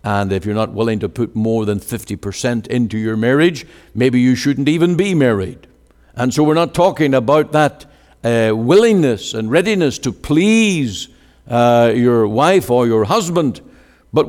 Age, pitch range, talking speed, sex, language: 60-79, 100-150 Hz, 165 wpm, male, English